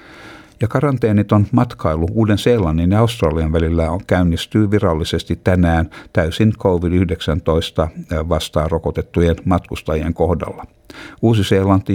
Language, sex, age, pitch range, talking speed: Finnish, male, 60-79, 80-100 Hz, 85 wpm